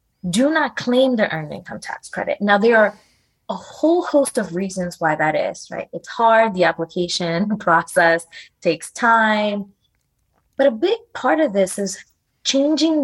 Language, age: English, 20-39